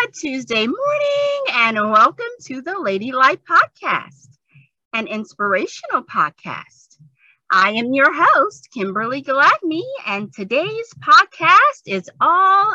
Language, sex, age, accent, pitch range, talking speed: English, female, 30-49, American, 195-325 Hz, 110 wpm